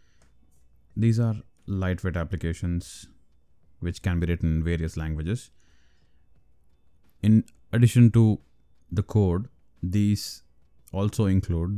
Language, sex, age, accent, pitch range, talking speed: English, male, 20-39, Indian, 80-100 Hz, 95 wpm